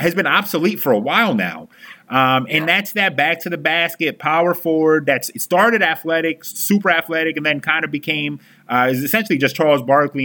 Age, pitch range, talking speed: 30-49, 140-190 Hz, 195 wpm